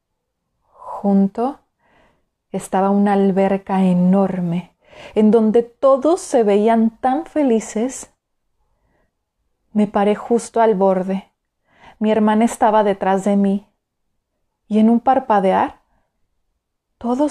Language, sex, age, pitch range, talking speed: Spanish, female, 30-49, 195-225 Hz, 95 wpm